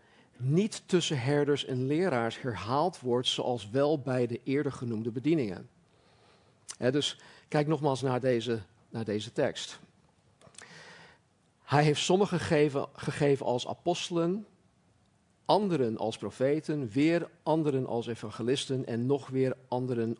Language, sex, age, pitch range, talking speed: Dutch, male, 50-69, 120-155 Hz, 120 wpm